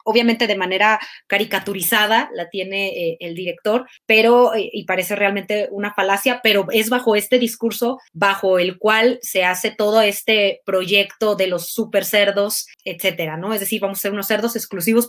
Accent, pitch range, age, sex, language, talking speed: Mexican, 185-235 Hz, 20-39, female, Spanish, 165 wpm